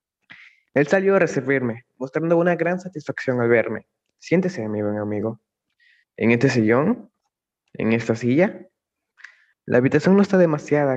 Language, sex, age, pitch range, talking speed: Spanish, male, 20-39, 120-150 Hz, 135 wpm